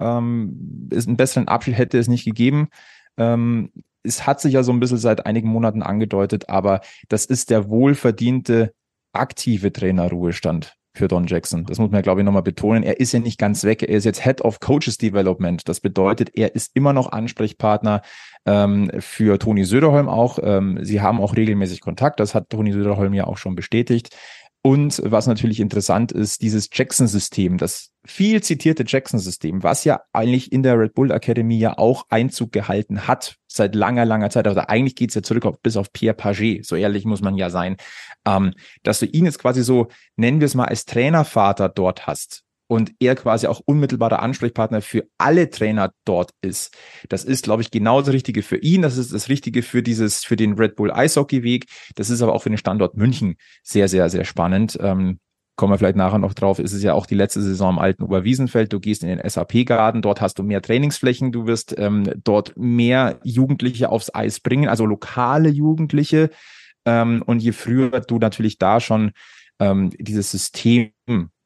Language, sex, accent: German, male, German